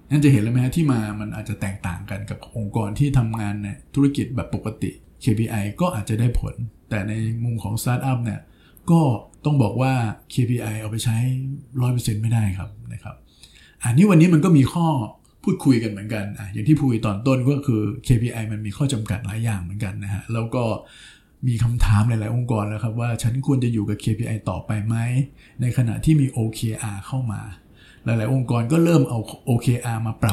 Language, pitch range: Thai, 105-130 Hz